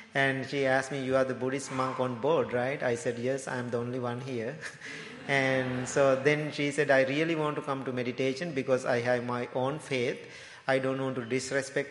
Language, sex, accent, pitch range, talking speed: English, male, Indian, 130-145 Hz, 215 wpm